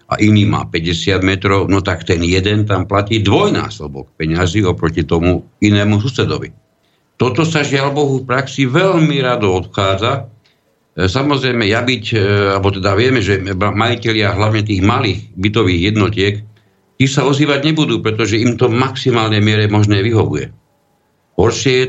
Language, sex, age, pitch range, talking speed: Slovak, male, 50-69, 85-110 Hz, 145 wpm